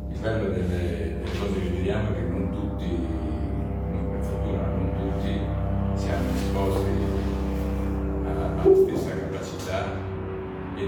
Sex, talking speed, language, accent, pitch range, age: male, 110 wpm, Italian, native, 80-95 Hz, 50-69